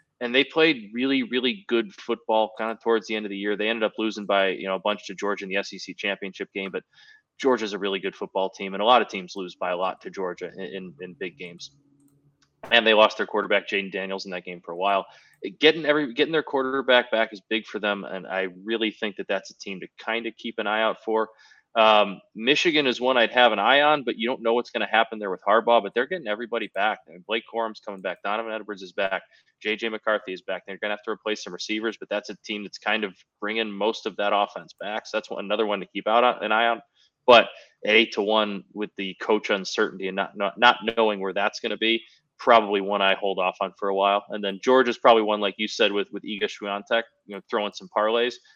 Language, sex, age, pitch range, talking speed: English, male, 20-39, 100-115 Hz, 260 wpm